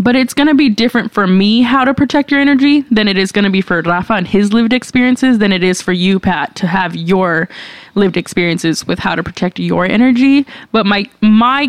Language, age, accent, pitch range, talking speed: English, 20-39, American, 185-225 Hz, 230 wpm